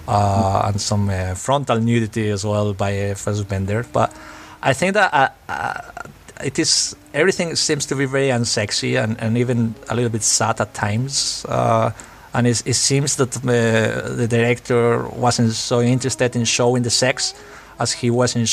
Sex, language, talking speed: male, English, 175 wpm